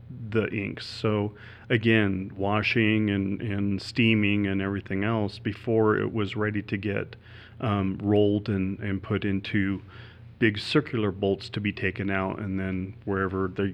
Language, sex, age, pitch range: English, male, 40-59, 95-110 Hz